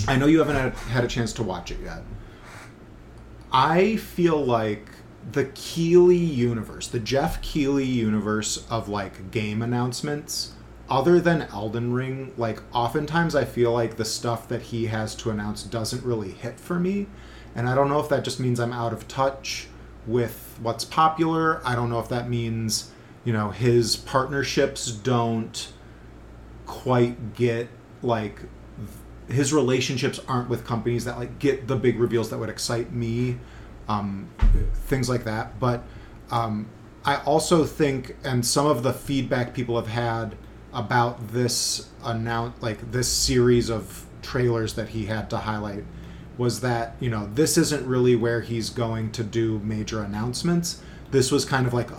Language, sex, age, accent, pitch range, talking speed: English, male, 30-49, American, 110-130 Hz, 160 wpm